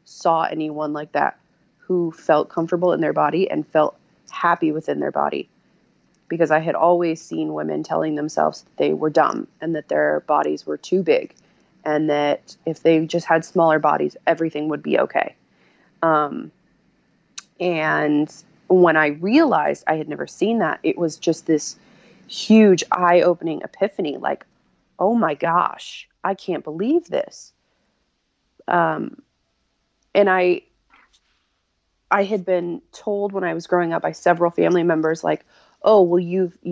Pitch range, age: 155-185 Hz, 20-39